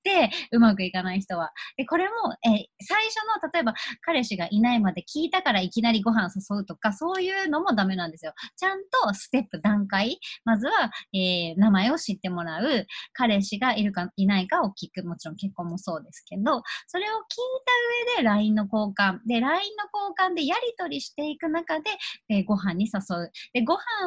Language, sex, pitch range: Japanese, male, 190-320 Hz